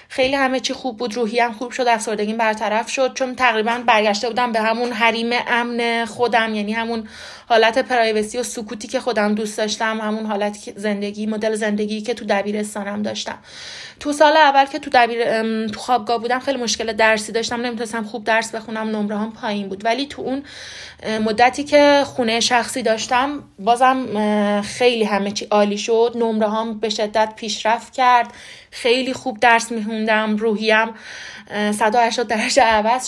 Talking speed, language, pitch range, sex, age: 165 wpm, Persian, 220-260 Hz, female, 20-39